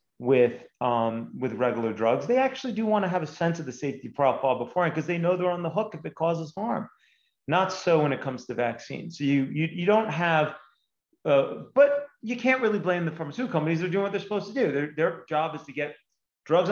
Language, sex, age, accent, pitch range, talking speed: English, male, 30-49, American, 125-175 Hz, 235 wpm